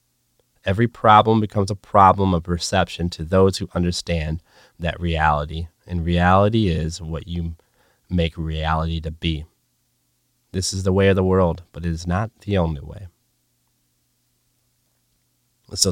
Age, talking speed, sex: 30-49, 140 wpm, male